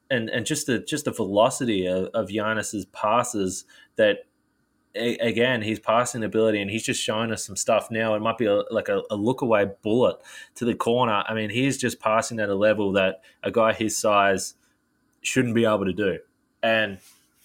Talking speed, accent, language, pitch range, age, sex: 195 wpm, Australian, English, 100-120 Hz, 20-39, male